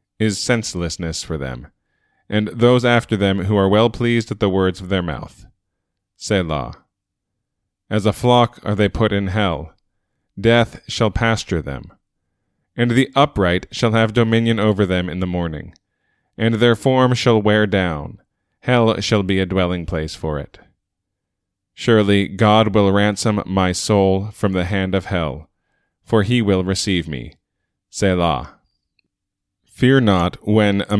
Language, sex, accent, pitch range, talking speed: English, male, American, 90-115 Hz, 150 wpm